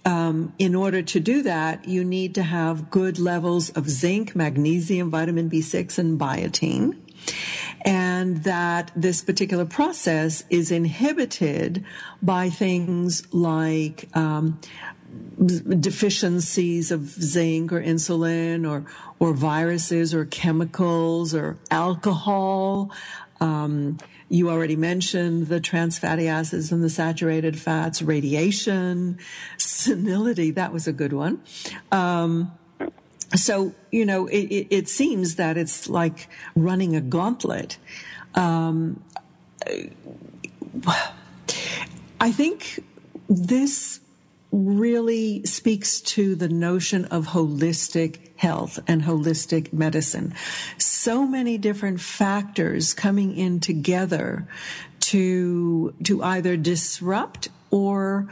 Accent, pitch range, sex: American, 165-195 Hz, female